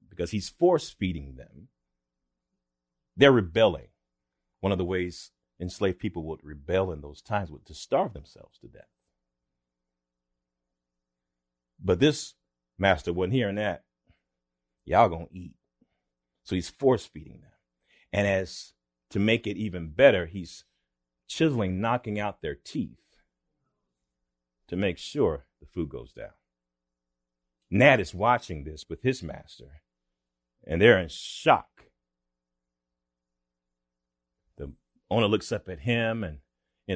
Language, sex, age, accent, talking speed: English, male, 40-59, American, 125 wpm